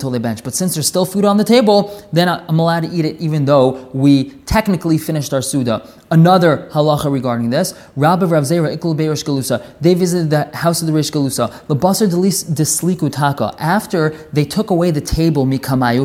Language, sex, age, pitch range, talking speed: English, male, 20-39, 145-180 Hz, 170 wpm